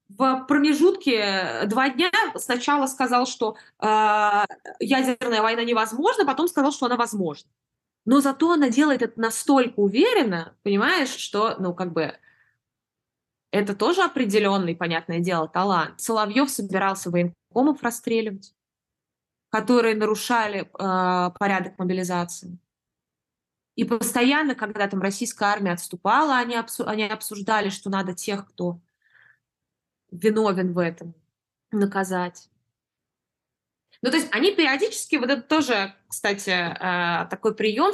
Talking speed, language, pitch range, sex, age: 115 wpm, Russian, 185-245 Hz, female, 20-39